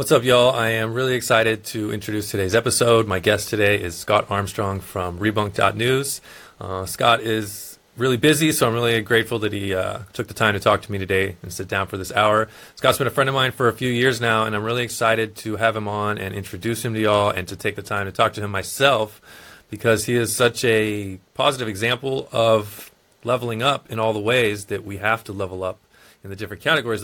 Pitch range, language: 100-120 Hz, English